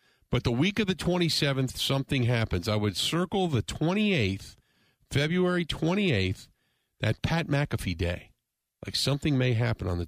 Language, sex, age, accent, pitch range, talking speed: English, male, 50-69, American, 90-150 Hz, 150 wpm